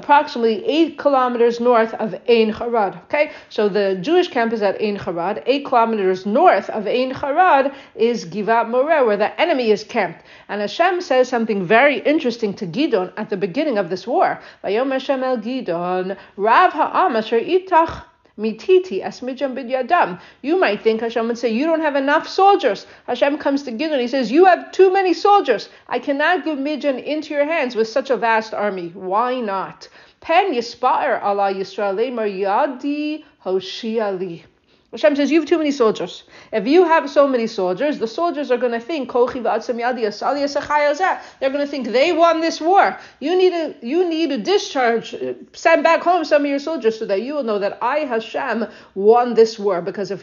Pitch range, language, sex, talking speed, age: 210-300 Hz, English, female, 170 wpm, 50-69